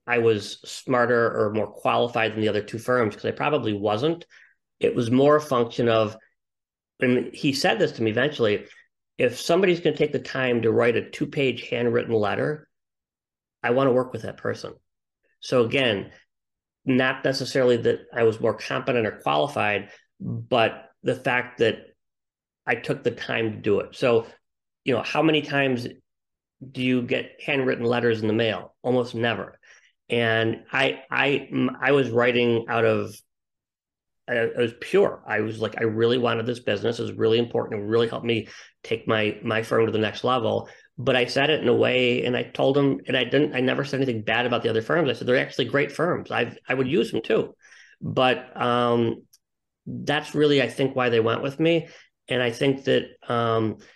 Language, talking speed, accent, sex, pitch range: English, 195 wpm, American, male, 115-135 Hz